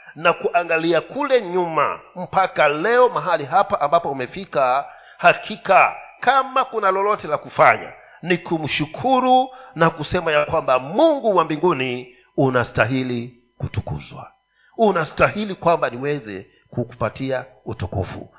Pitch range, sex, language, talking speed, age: 150-230 Hz, male, Swahili, 105 wpm, 50-69